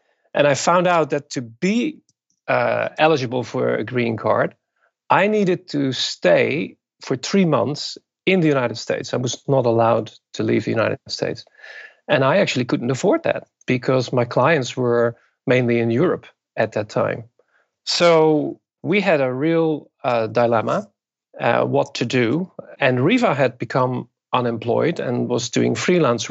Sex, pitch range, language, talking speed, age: male, 120-160 Hz, English, 155 wpm, 40-59